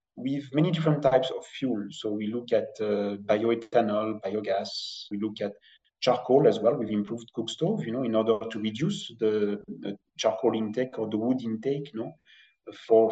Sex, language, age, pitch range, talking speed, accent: male, English, 30-49, 110-130 Hz, 185 wpm, French